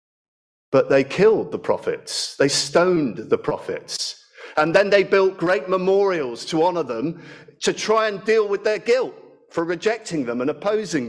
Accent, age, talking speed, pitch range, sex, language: British, 50-69, 160 wpm, 175-240 Hz, male, English